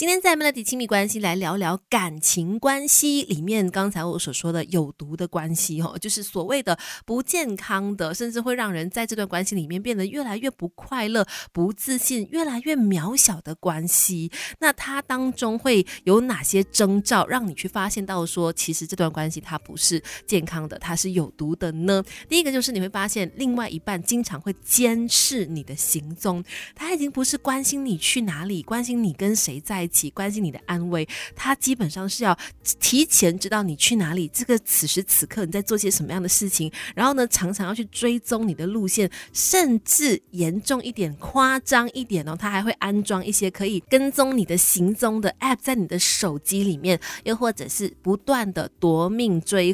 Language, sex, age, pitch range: Chinese, female, 20-39, 175-235 Hz